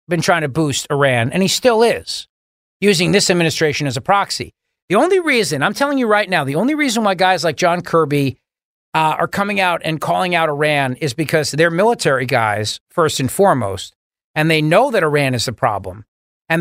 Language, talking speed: English, 200 wpm